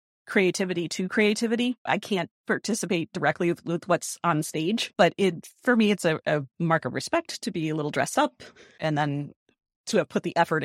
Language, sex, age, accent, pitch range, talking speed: English, female, 40-59, American, 160-190 Hz, 195 wpm